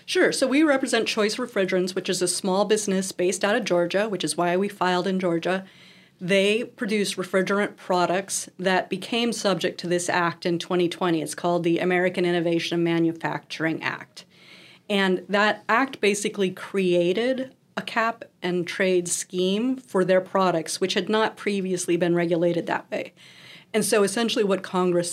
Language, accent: English, American